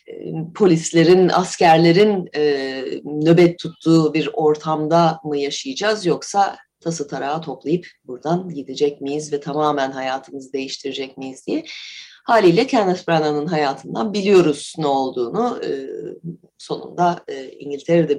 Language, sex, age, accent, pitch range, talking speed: Turkish, female, 30-49, native, 150-200 Hz, 100 wpm